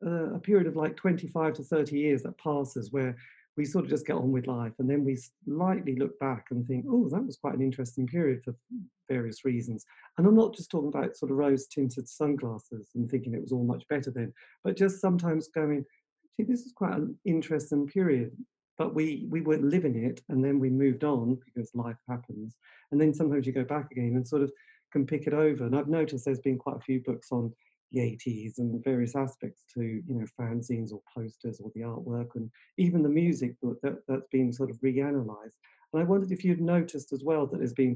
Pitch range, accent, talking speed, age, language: 125-155 Hz, British, 225 wpm, 40-59, English